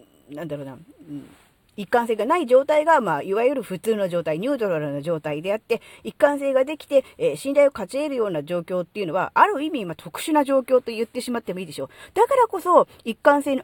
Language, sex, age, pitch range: Japanese, female, 40-59, 160-270 Hz